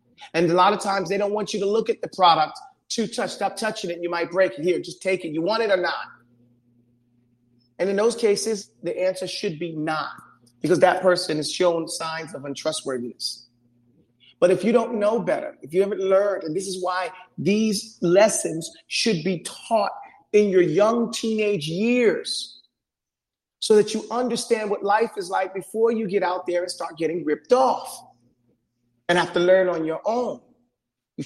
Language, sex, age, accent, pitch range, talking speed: English, male, 30-49, American, 155-220 Hz, 190 wpm